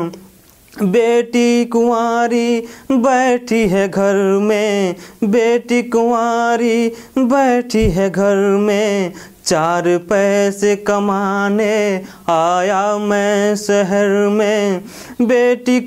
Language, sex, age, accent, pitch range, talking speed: Hindi, male, 30-49, native, 195-230 Hz, 75 wpm